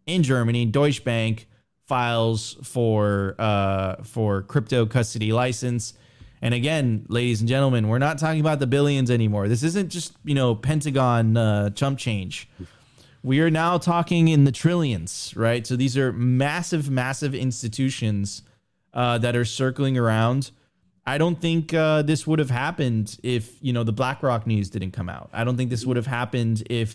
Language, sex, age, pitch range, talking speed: English, male, 20-39, 115-135 Hz, 170 wpm